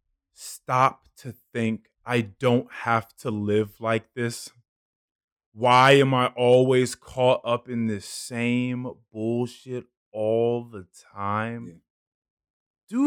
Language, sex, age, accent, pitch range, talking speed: English, male, 20-39, American, 115-160 Hz, 110 wpm